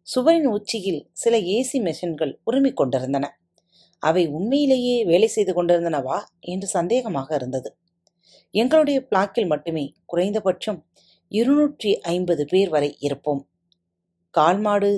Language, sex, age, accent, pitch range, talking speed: Tamil, female, 30-49, native, 150-230 Hz, 100 wpm